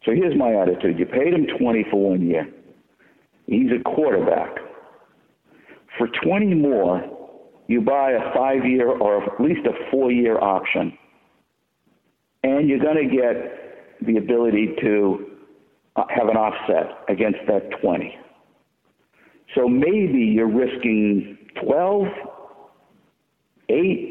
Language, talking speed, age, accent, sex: English, 120 wpm, 60-79, American, male